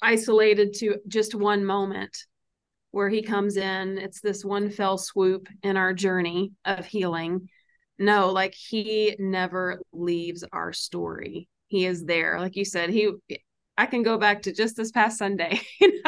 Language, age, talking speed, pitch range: English, 30-49, 155 wpm, 175-205 Hz